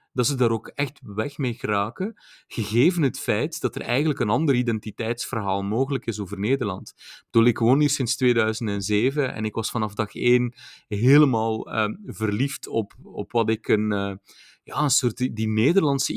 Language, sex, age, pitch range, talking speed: Dutch, male, 30-49, 110-135 Hz, 170 wpm